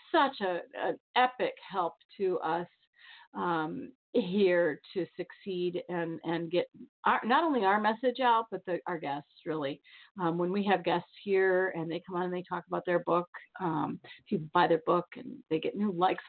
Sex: female